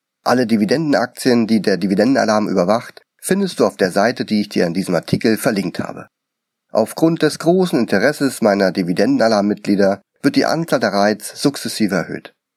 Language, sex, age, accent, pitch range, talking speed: German, male, 40-59, German, 95-125 Hz, 155 wpm